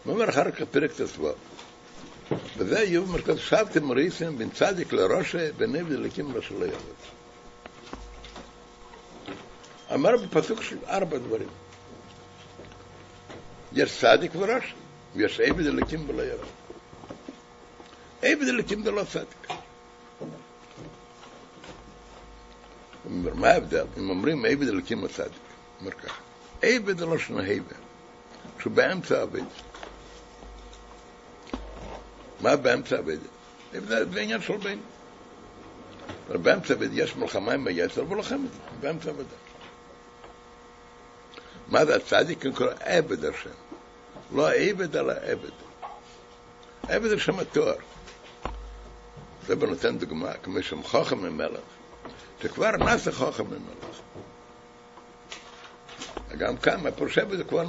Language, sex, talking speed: Hebrew, male, 100 wpm